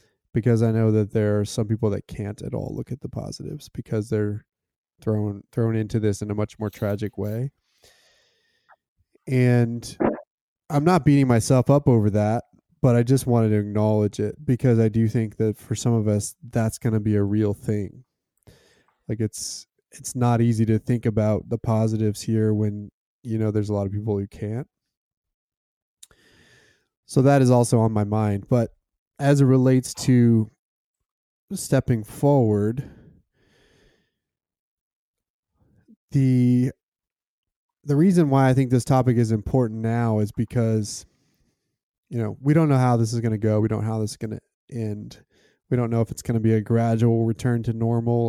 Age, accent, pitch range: 20-39, American, 110-130 Hz